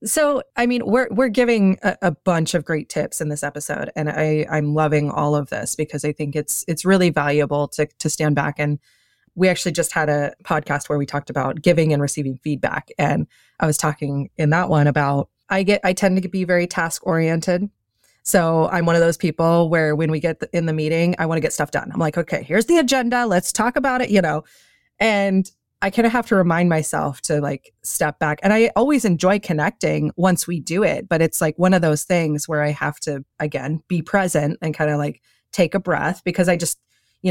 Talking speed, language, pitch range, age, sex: 230 wpm, English, 150-195 Hz, 20-39, female